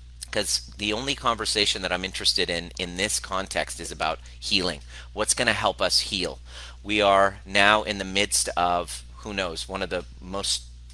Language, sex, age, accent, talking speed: English, male, 30-49, American, 175 wpm